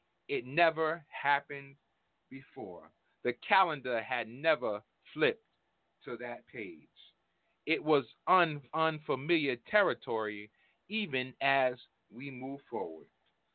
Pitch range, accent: 135-185 Hz, American